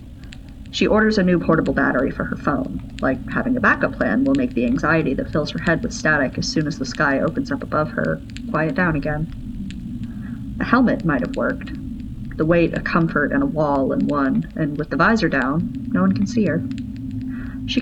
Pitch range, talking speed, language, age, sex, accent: 145-225 Hz, 200 wpm, English, 30-49, female, American